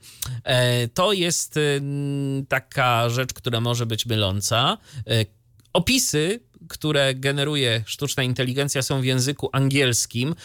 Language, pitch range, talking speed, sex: Polish, 115-140 Hz, 100 wpm, male